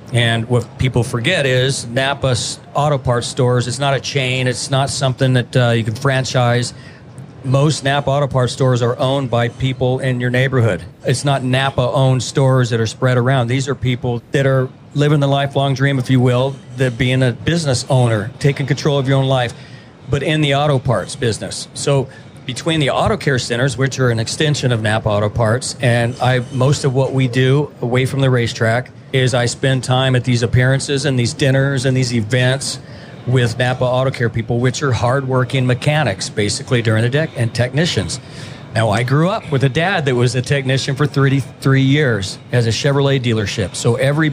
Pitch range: 125-140 Hz